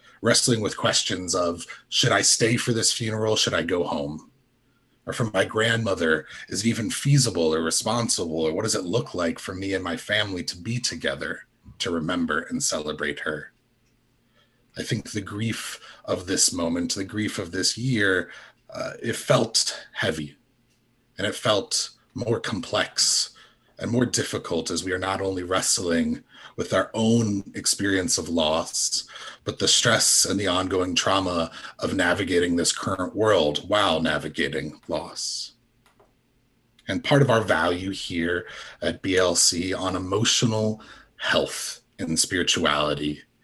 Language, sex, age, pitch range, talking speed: English, male, 30-49, 90-120 Hz, 150 wpm